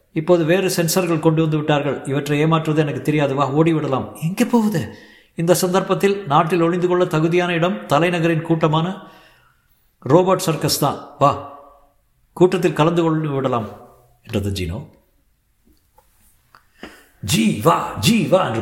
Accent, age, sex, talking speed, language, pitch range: native, 50-69, male, 75 wpm, Tamil, 120-185 Hz